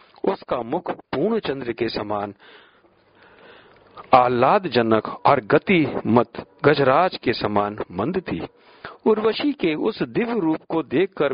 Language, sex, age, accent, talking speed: Hindi, male, 50-69, native, 120 wpm